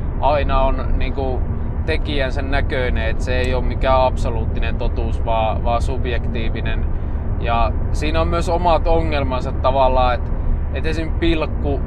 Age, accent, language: 20-39, native, Finnish